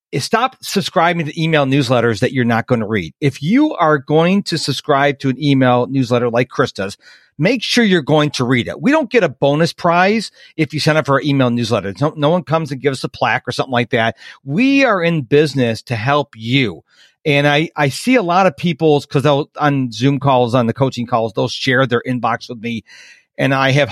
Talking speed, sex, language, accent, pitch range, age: 225 wpm, male, English, American, 135-180 Hz, 40-59